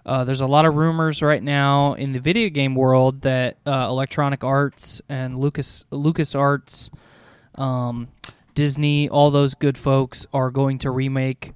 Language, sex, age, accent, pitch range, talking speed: English, male, 20-39, American, 130-150 Hz, 160 wpm